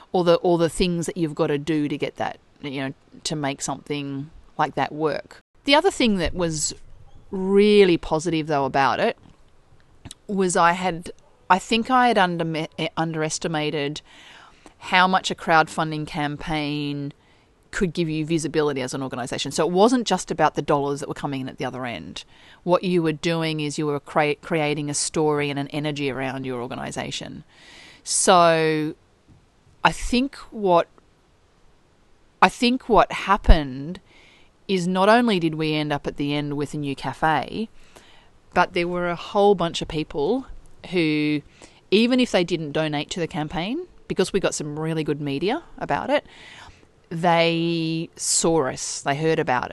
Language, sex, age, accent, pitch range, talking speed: English, female, 30-49, Australian, 145-180 Hz, 165 wpm